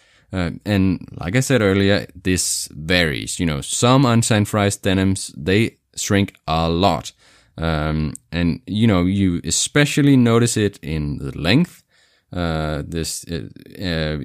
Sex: male